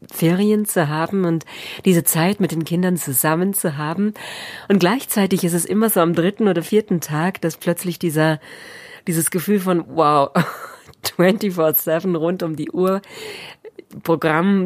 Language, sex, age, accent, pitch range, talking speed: German, female, 40-59, German, 165-210 Hz, 145 wpm